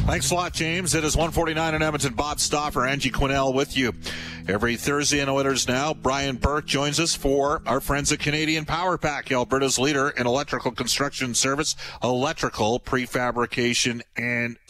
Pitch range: 120-145 Hz